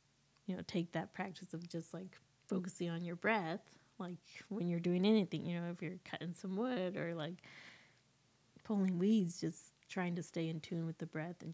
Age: 20-39